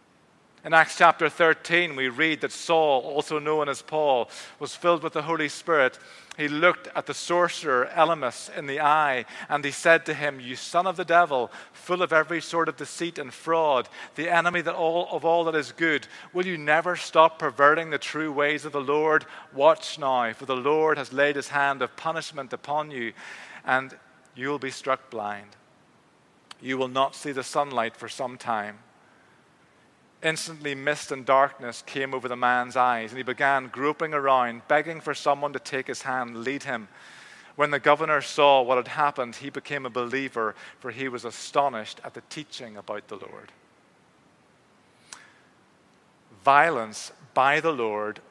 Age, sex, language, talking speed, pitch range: 40-59, male, English, 175 wpm, 125-155 Hz